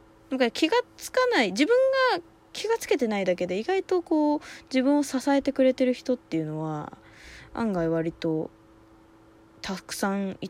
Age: 20-39